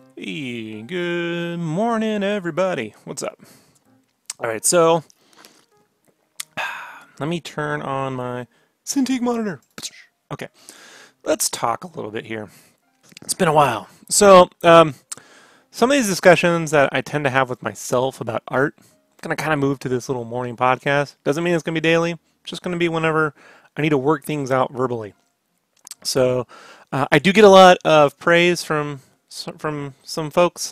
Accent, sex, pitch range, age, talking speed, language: American, male, 130-170 Hz, 30-49, 170 wpm, English